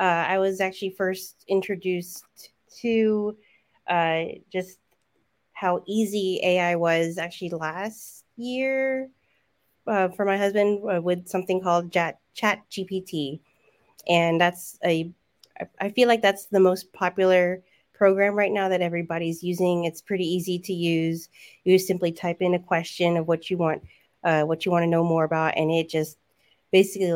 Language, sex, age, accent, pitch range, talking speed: English, female, 30-49, American, 165-195 Hz, 155 wpm